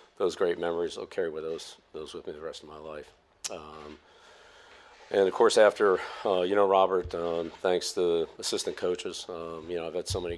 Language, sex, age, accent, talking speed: English, male, 50-69, American, 215 wpm